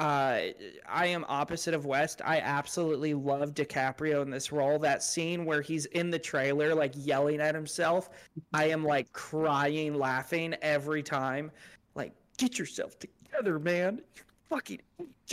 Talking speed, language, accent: 150 wpm, English, American